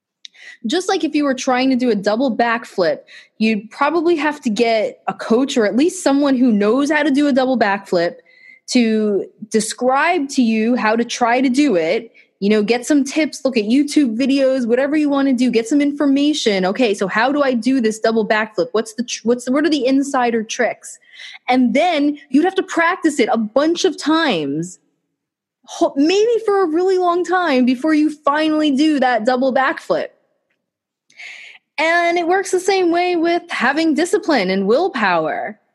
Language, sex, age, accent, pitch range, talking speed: English, female, 20-39, American, 225-300 Hz, 185 wpm